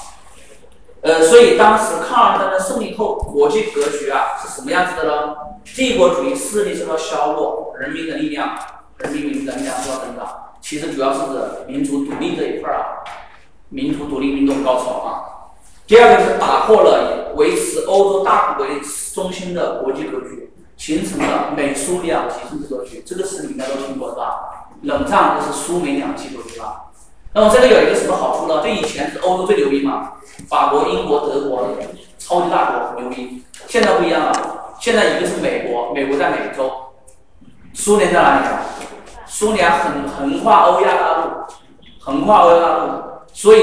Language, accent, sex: Chinese, native, male